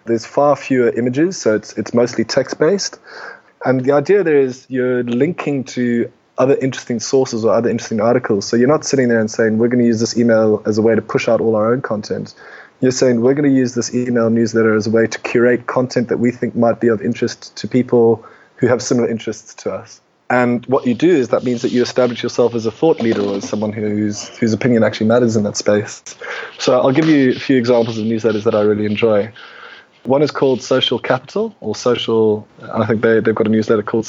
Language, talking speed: English, 230 wpm